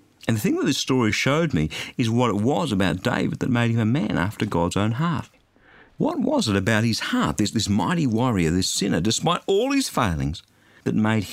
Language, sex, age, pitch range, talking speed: English, male, 50-69, 100-150 Hz, 215 wpm